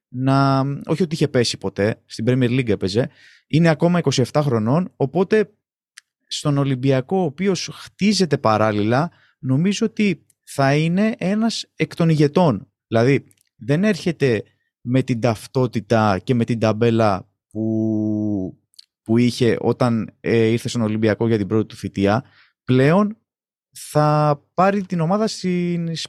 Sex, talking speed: male, 135 wpm